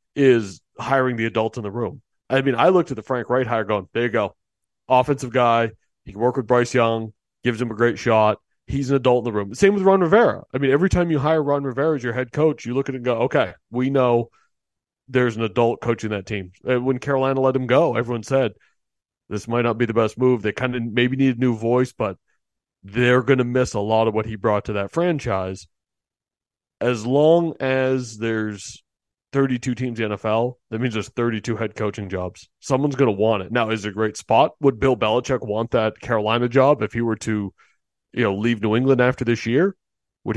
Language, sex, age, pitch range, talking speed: English, male, 30-49, 110-130 Hz, 225 wpm